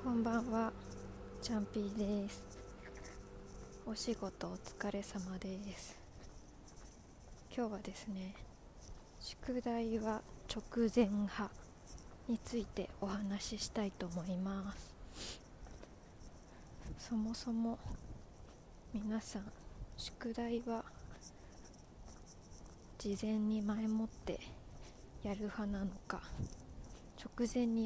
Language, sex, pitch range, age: Japanese, female, 175-225 Hz, 20-39